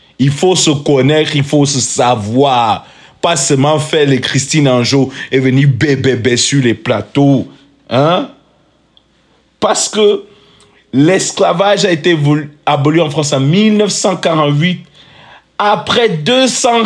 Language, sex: English, male